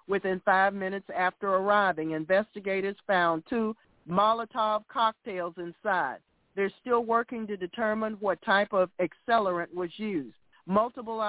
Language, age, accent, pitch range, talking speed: English, 50-69, American, 185-215 Hz, 120 wpm